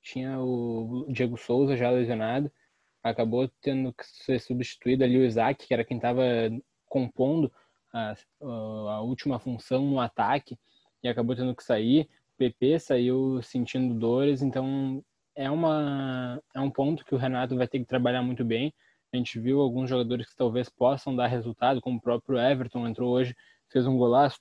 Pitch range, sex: 120-135 Hz, male